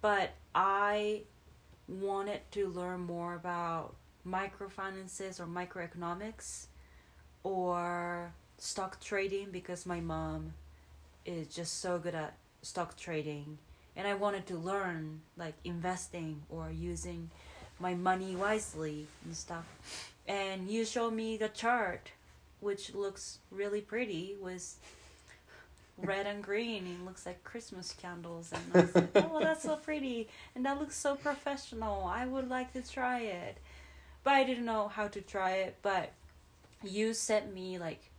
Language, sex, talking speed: English, female, 140 wpm